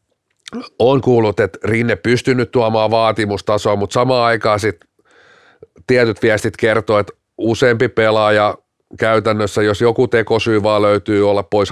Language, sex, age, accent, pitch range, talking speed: Finnish, male, 30-49, native, 100-125 Hz, 135 wpm